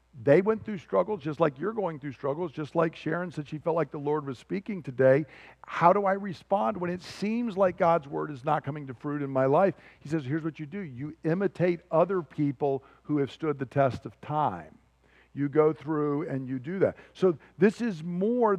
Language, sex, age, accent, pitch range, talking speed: English, male, 50-69, American, 135-170 Hz, 220 wpm